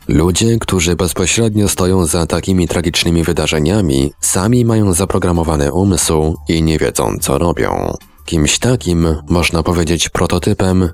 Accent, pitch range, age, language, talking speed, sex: native, 75-95 Hz, 30-49, Polish, 120 wpm, male